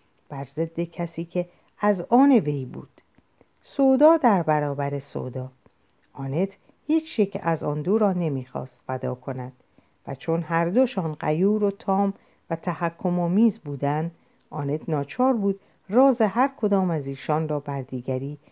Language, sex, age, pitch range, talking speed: Persian, female, 50-69, 145-215 Hz, 135 wpm